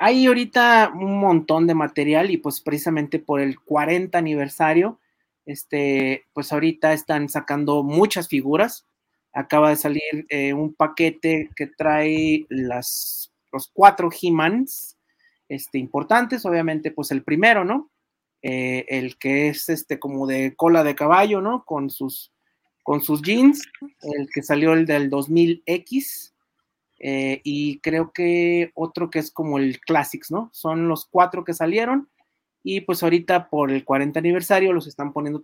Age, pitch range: 40-59, 140-180 Hz